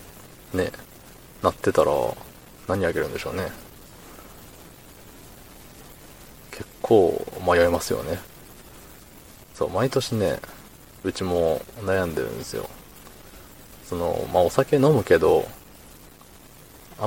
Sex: male